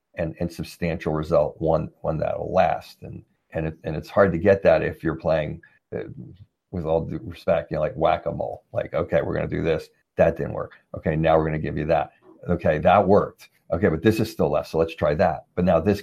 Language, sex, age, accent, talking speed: English, male, 50-69, American, 230 wpm